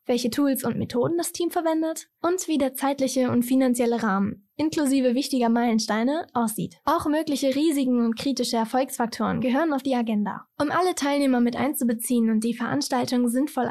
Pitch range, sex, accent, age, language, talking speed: 235-280 Hz, female, German, 10-29, German, 160 wpm